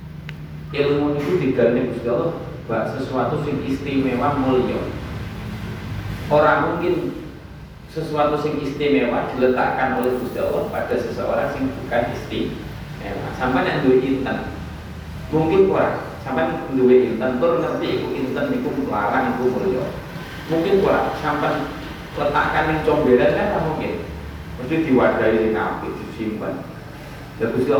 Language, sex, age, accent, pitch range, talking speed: Indonesian, male, 30-49, native, 110-150 Hz, 115 wpm